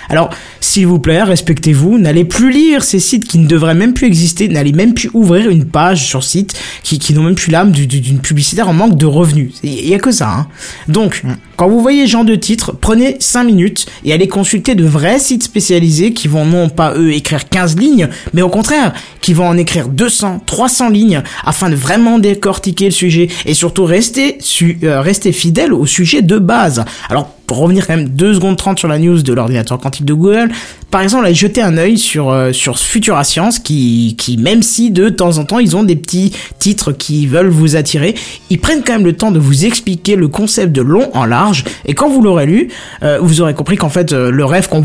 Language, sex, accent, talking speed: French, male, French, 225 wpm